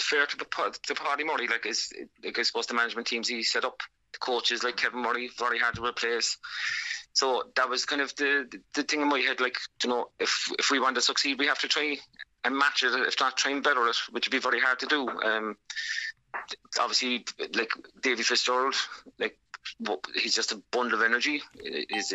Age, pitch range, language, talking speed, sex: 30-49, 115-135 Hz, English, 215 wpm, male